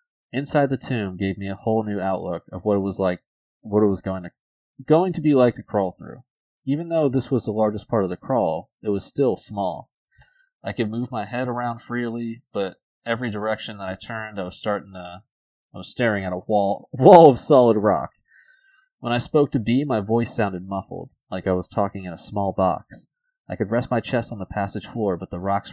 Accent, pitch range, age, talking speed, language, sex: American, 95-125 Hz, 30-49, 225 wpm, English, male